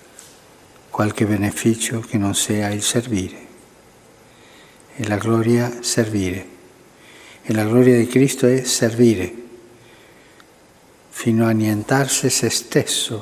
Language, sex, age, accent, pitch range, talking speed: Italian, male, 60-79, native, 105-130 Hz, 105 wpm